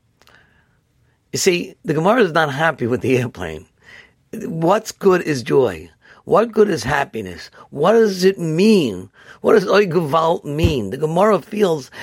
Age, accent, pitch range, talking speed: 50-69, American, 120-170 Hz, 145 wpm